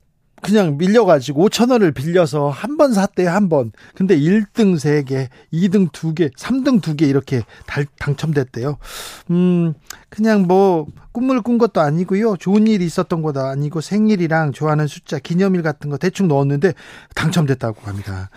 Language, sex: Korean, male